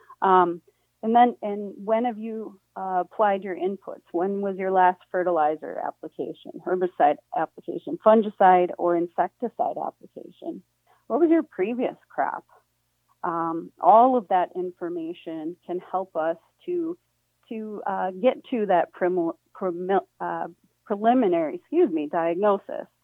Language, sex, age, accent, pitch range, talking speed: English, female, 40-59, American, 175-235 Hz, 130 wpm